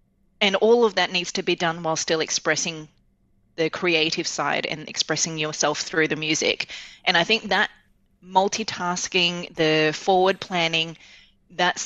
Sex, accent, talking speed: female, Australian, 145 wpm